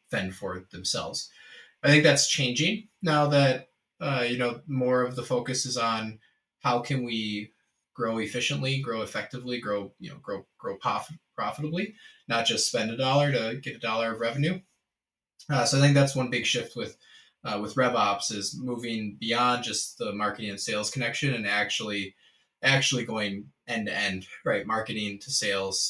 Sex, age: male, 20-39